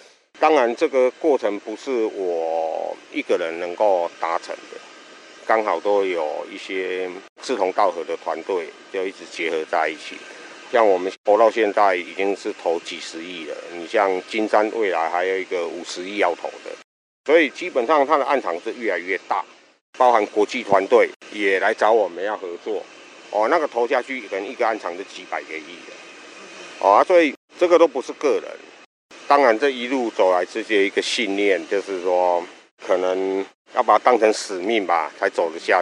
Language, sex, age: Chinese, male, 50-69